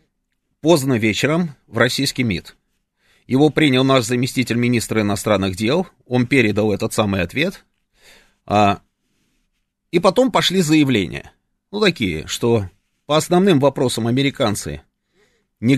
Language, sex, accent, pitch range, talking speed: Russian, male, native, 105-150 Hz, 115 wpm